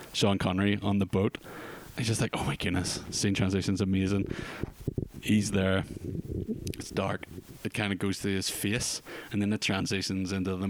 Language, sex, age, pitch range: English, male, 20-39, 95-110 Hz